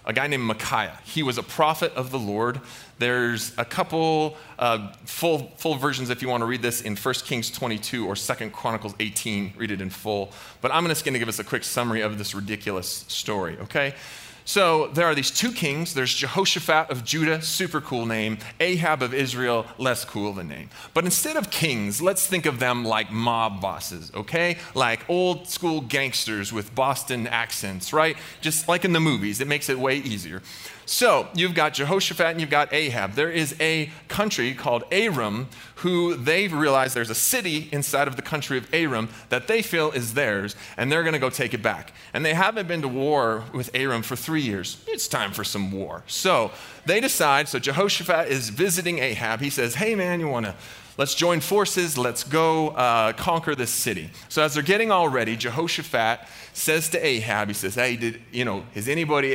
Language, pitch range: English, 115-160 Hz